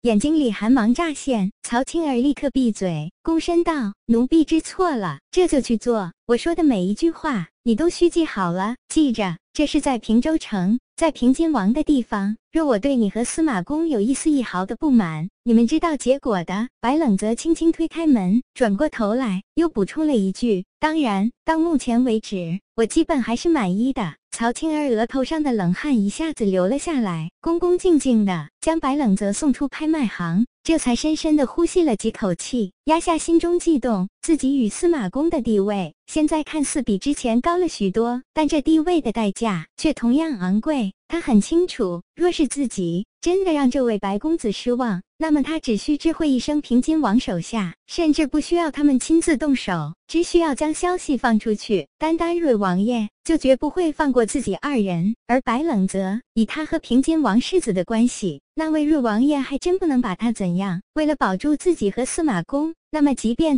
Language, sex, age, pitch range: Chinese, male, 20-39, 215-315 Hz